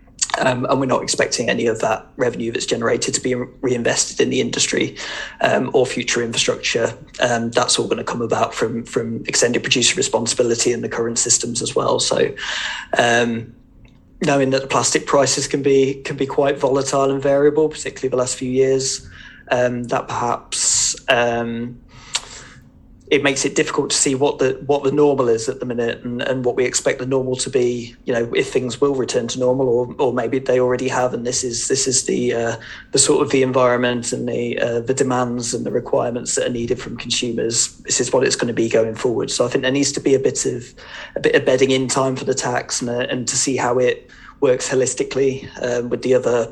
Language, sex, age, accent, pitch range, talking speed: English, male, 20-39, British, 120-135 Hz, 215 wpm